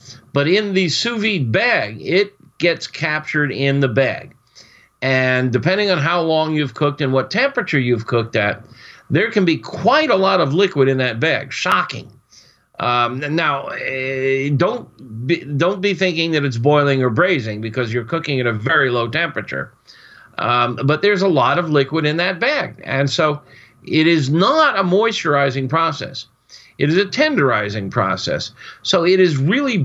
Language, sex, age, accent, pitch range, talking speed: English, male, 50-69, American, 130-175 Hz, 165 wpm